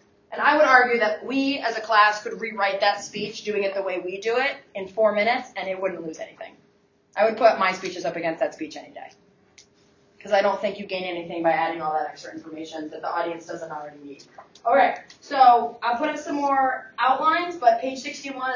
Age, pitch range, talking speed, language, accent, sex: 20-39, 190-245 Hz, 225 wpm, English, American, female